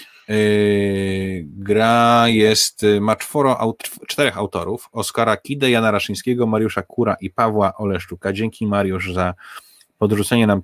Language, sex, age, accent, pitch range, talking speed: Polish, male, 30-49, native, 100-110 Hz, 105 wpm